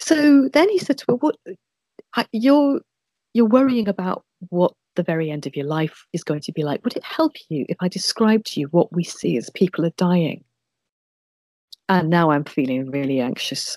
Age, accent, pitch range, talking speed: 40-59, British, 155-220 Hz, 195 wpm